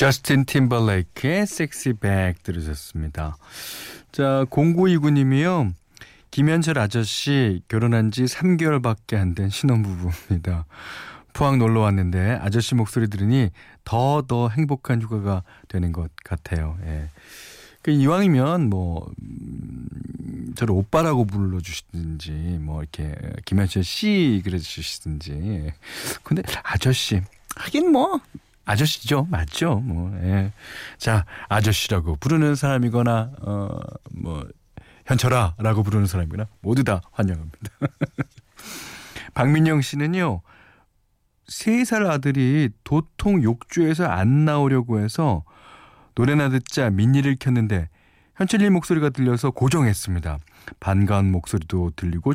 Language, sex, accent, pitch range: Korean, male, native, 90-140 Hz